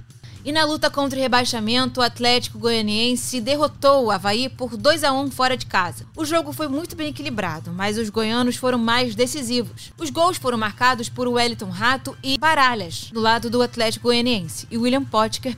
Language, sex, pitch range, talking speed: Portuguese, female, 210-275 Hz, 175 wpm